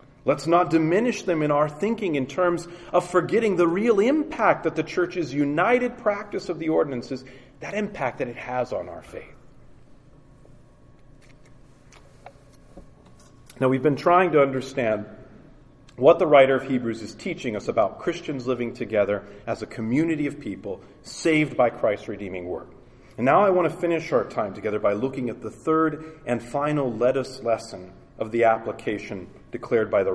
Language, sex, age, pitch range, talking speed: English, male, 40-59, 120-160 Hz, 165 wpm